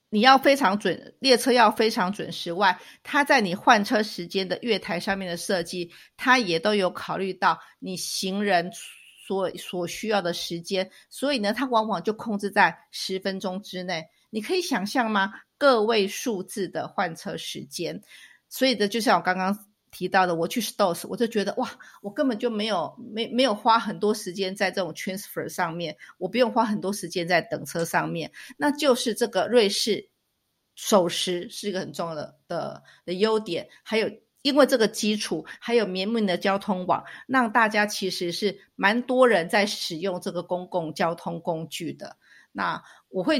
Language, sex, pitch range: Chinese, female, 185-225 Hz